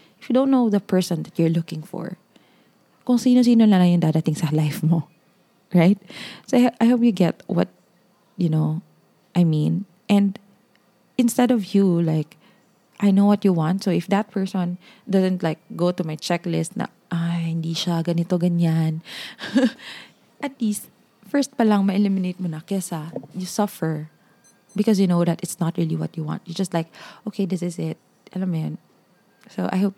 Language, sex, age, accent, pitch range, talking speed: English, female, 20-39, Filipino, 170-210 Hz, 170 wpm